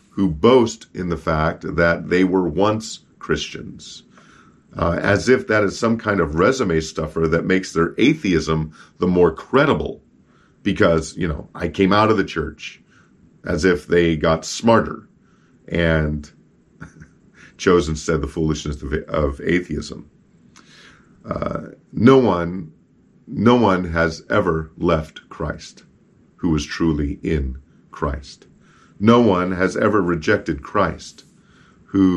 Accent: American